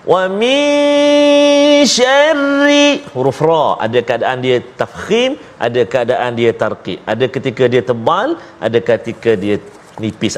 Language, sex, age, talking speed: Malayalam, male, 40-59, 120 wpm